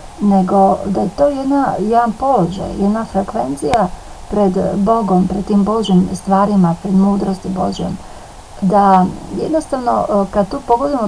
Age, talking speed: 40-59, 125 wpm